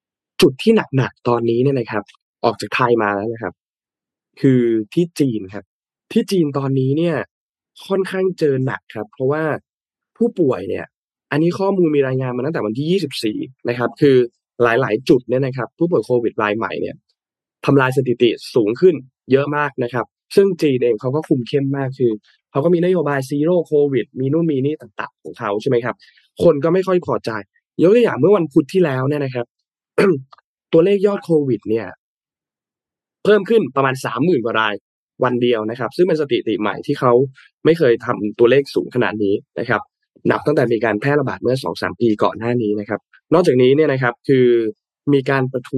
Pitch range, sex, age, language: 120-160 Hz, male, 20-39, Thai